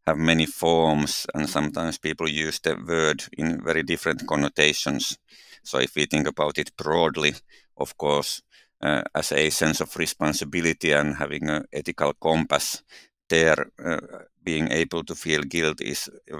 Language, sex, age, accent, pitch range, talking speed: English, male, 50-69, Finnish, 75-80 Hz, 155 wpm